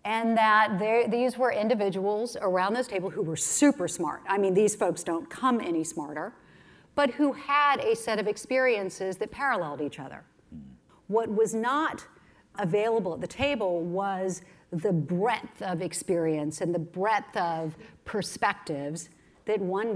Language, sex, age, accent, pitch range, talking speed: English, female, 50-69, American, 175-220 Hz, 150 wpm